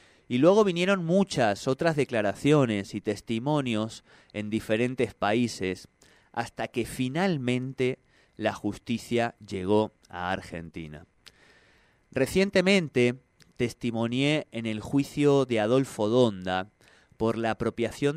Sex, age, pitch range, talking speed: male, 30-49, 100-130 Hz, 100 wpm